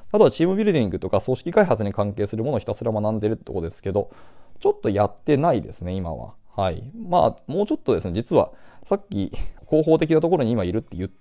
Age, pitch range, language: 20-39, 90-135 Hz, Japanese